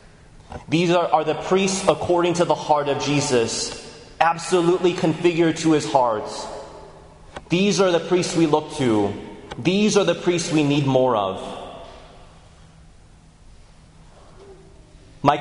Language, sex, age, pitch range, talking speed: English, male, 30-49, 135-175 Hz, 125 wpm